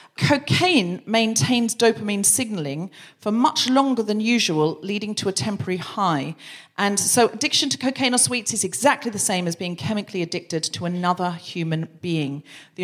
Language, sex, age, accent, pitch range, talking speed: English, female, 40-59, British, 180-250 Hz, 160 wpm